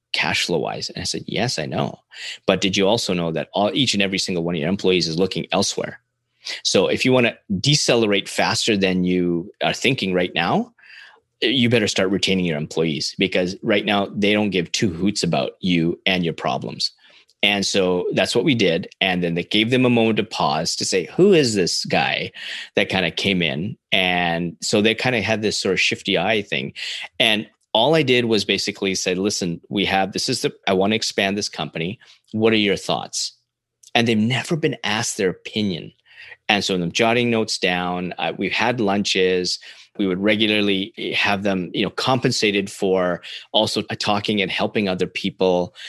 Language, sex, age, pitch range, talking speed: English, male, 30-49, 90-115 Hz, 200 wpm